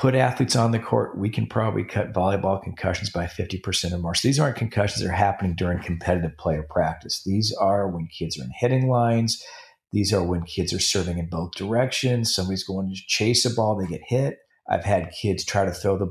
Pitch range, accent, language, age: 95-120 Hz, American, English, 40-59